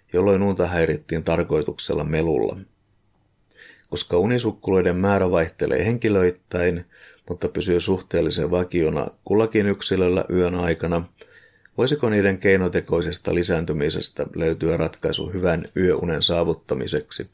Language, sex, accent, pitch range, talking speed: Finnish, male, native, 85-105 Hz, 95 wpm